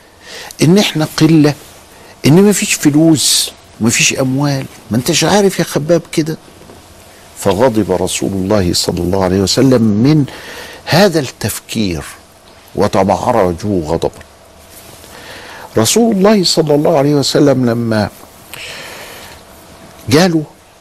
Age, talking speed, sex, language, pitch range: 50-69, 100 wpm, male, Arabic, 100-165 Hz